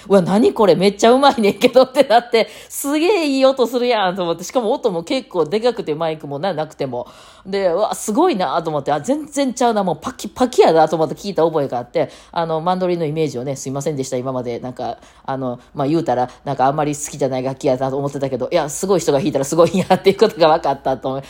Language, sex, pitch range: Japanese, female, 140-220 Hz